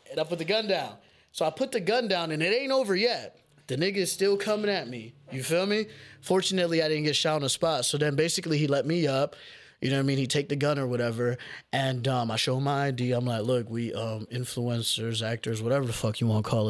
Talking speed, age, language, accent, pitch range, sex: 265 wpm, 20-39, English, American, 120-155 Hz, male